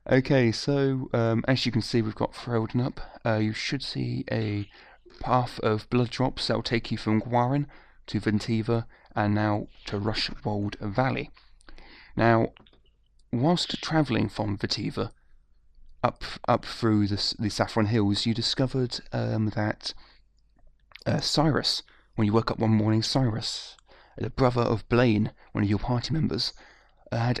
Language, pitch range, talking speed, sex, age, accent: English, 110-130 Hz, 150 wpm, male, 30-49, British